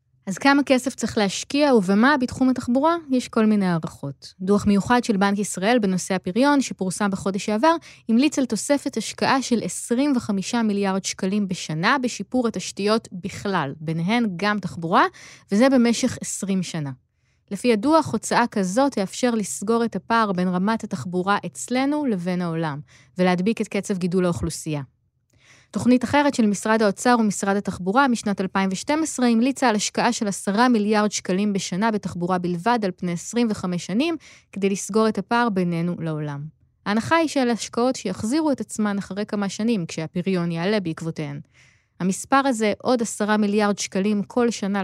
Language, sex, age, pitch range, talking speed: Hebrew, female, 20-39, 185-240 Hz, 145 wpm